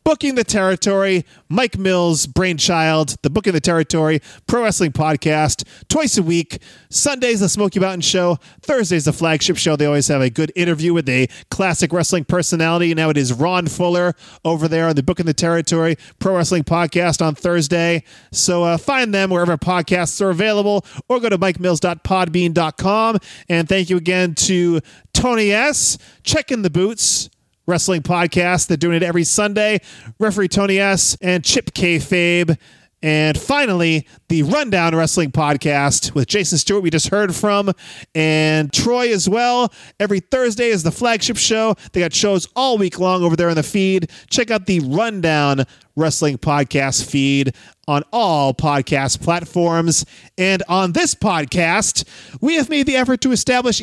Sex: male